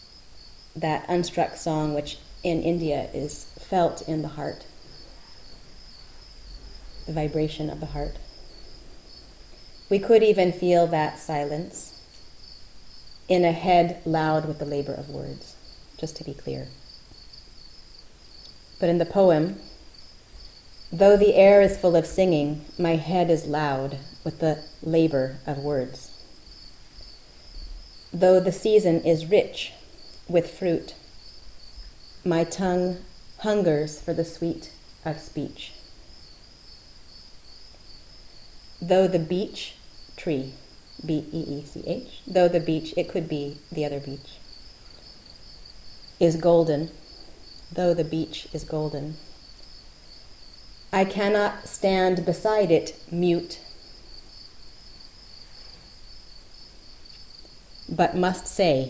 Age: 30-49